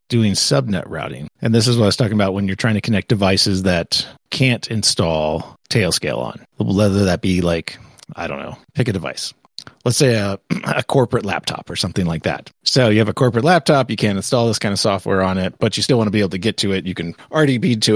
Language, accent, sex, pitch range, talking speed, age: English, American, male, 90-115 Hz, 240 wpm, 30-49